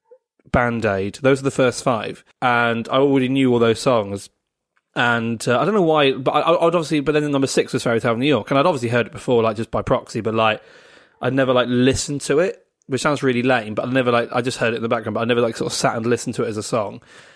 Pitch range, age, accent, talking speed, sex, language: 115-130 Hz, 20-39, British, 285 wpm, male, English